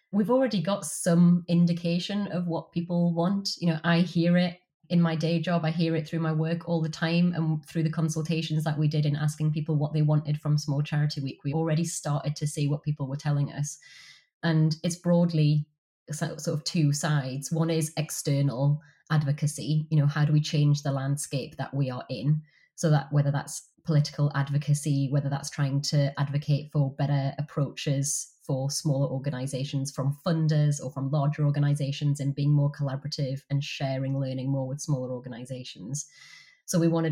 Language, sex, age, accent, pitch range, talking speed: English, female, 20-39, British, 145-165 Hz, 185 wpm